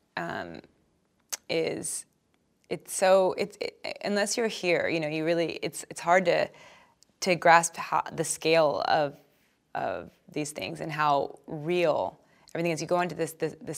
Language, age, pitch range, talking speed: English, 20-39, 160-190 Hz, 155 wpm